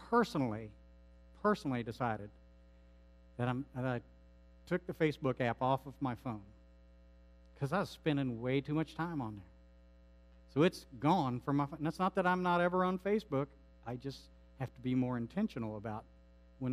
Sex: male